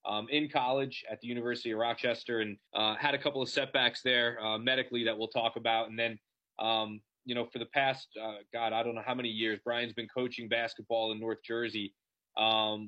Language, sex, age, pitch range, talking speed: English, male, 20-39, 110-125 Hz, 215 wpm